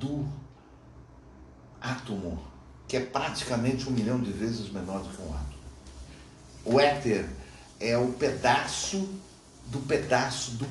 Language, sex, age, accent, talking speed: Portuguese, male, 60-79, Brazilian, 125 wpm